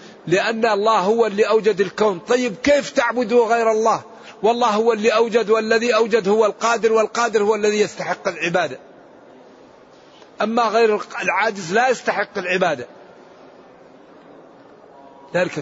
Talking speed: 120 wpm